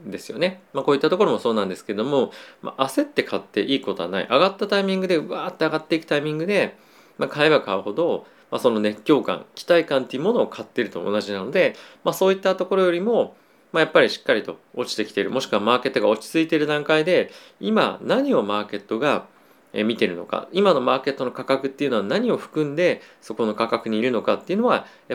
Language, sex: Japanese, male